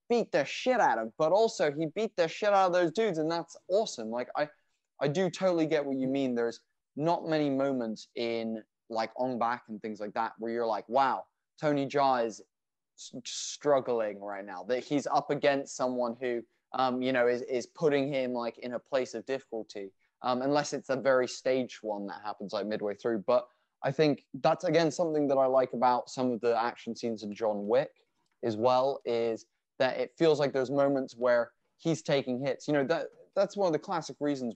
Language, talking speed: English, 210 wpm